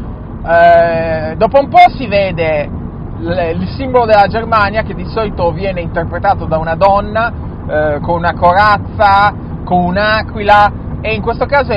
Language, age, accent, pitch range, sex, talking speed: Italian, 30-49, native, 170-250 Hz, male, 150 wpm